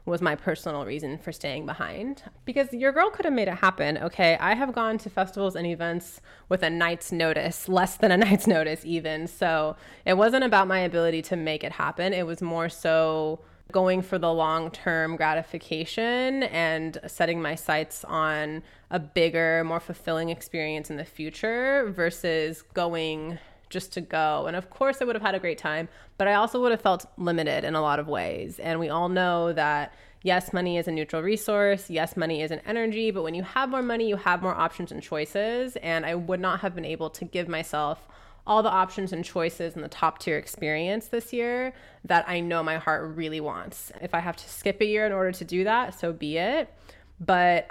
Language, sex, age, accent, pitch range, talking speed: English, female, 20-39, American, 160-200 Hz, 210 wpm